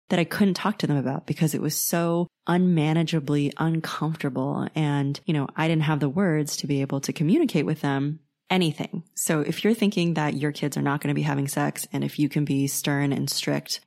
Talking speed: 220 wpm